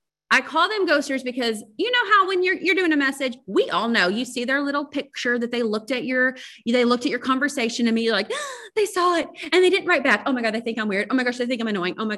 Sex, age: female, 30-49